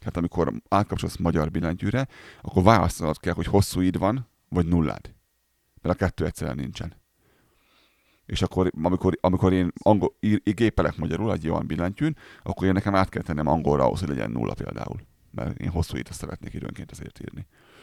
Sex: male